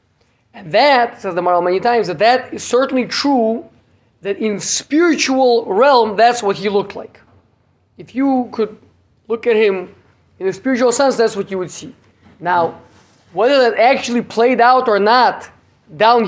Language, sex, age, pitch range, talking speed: English, male, 20-39, 165-230 Hz, 165 wpm